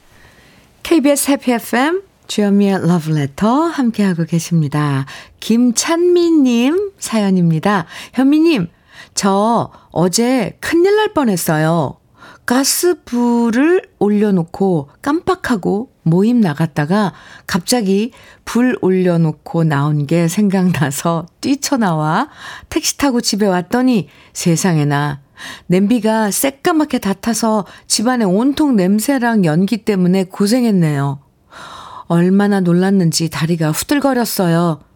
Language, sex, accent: Korean, female, native